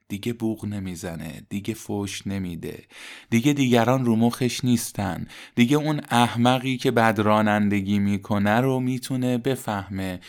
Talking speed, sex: 120 wpm, male